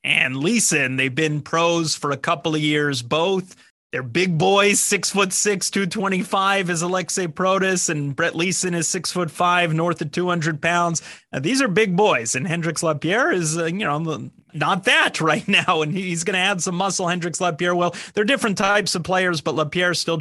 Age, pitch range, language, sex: 30-49, 150-175 Hz, English, male